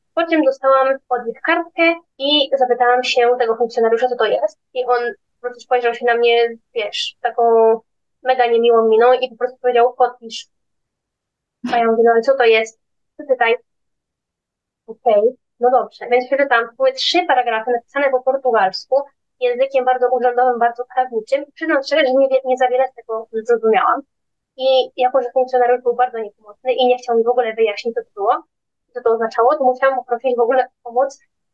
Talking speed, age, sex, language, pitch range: 175 wpm, 20-39, female, Polish, 235-275 Hz